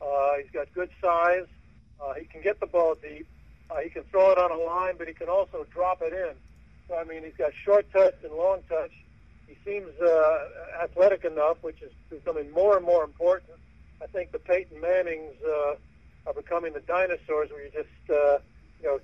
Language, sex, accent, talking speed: English, male, American, 205 wpm